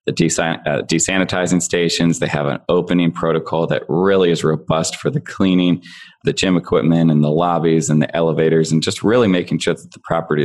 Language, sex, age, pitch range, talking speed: English, male, 20-39, 80-90 Hz, 190 wpm